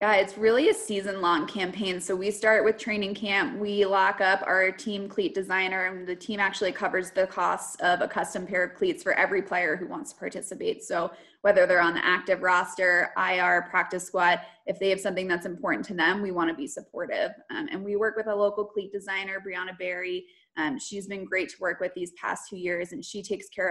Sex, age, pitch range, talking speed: female, 20-39, 180-215 Hz, 220 wpm